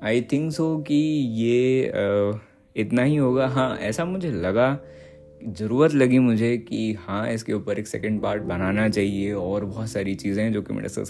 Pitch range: 95-115 Hz